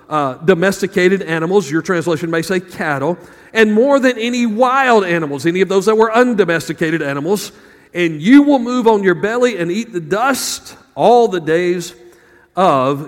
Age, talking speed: 40-59, 165 wpm